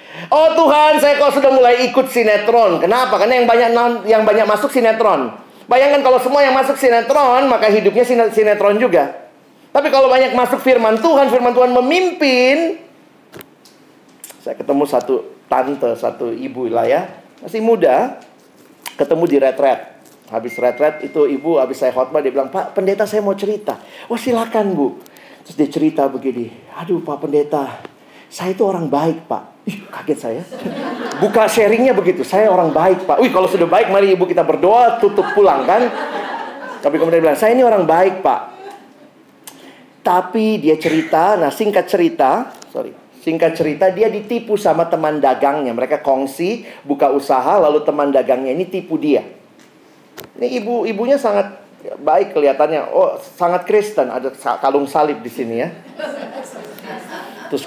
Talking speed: 155 wpm